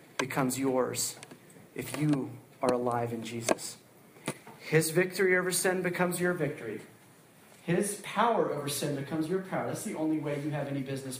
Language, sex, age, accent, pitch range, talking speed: English, male, 40-59, American, 135-185 Hz, 160 wpm